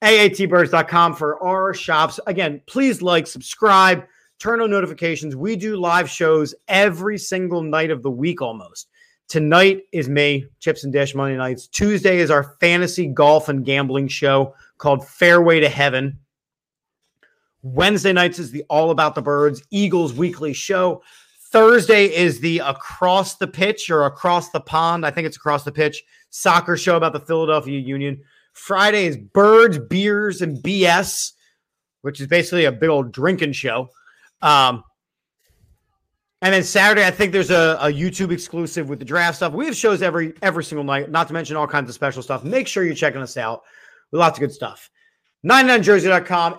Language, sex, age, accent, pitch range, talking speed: English, male, 30-49, American, 150-190 Hz, 170 wpm